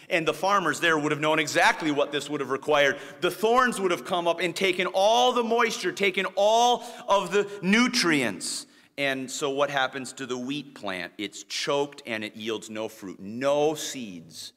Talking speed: 190 wpm